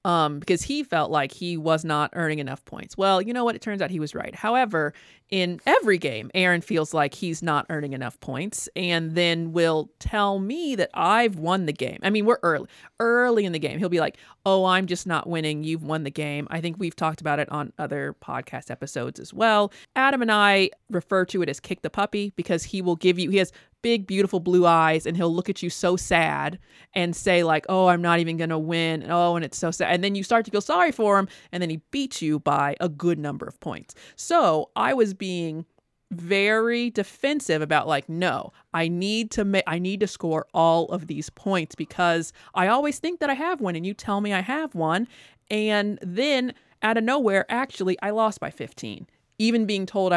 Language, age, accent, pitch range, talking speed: English, 30-49, American, 160-205 Hz, 225 wpm